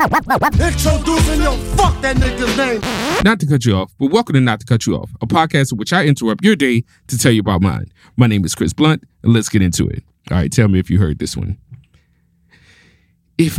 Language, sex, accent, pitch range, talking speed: English, male, American, 95-150 Hz, 205 wpm